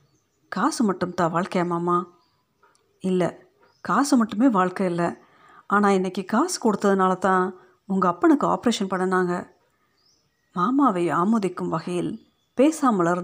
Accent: native